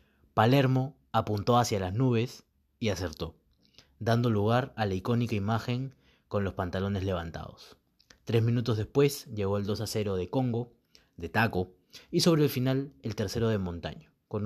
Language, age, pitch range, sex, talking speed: Spanish, 30-49, 100-125 Hz, male, 160 wpm